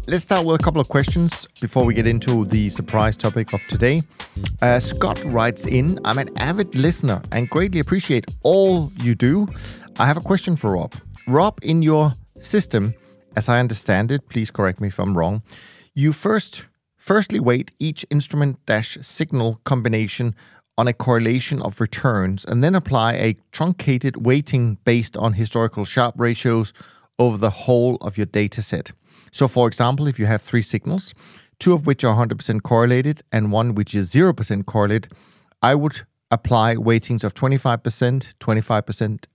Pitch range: 105-135 Hz